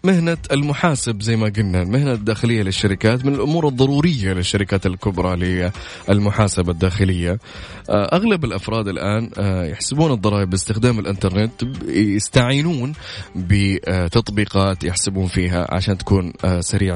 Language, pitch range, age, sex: Arabic, 95-120 Hz, 20-39, male